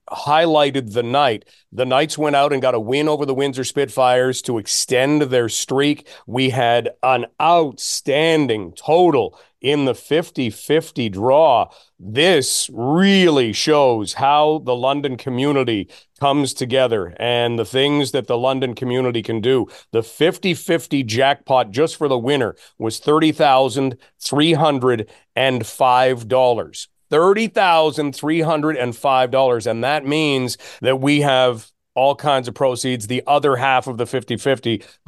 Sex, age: male, 40-59